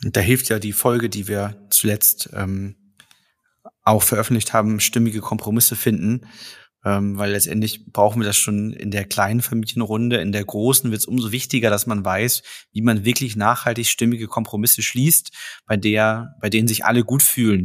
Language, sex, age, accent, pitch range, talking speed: German, male, 30-49, German, 105-120 Hz, 175 wpm